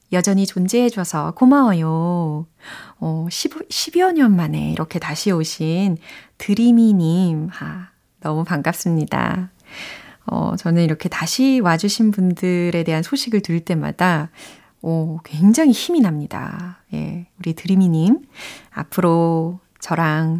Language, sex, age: Korean, female, 30-49